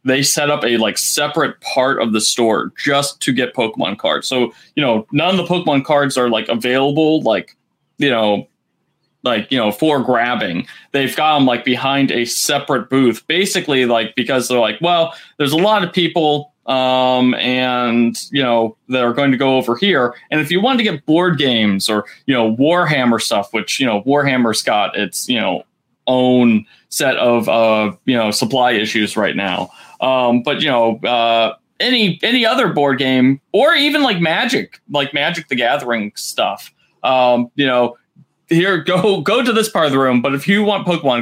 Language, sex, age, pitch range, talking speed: English, male, 20-39, 125-170 Hz, 190 wpm